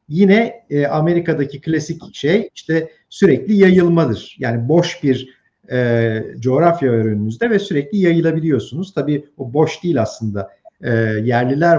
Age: 50-69